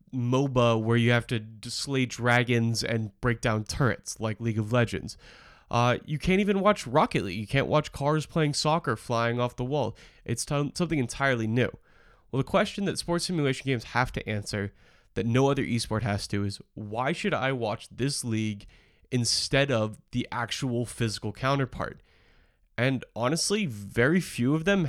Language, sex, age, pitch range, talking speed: English, male, 20-39, 115-150 Hz, 175 wpm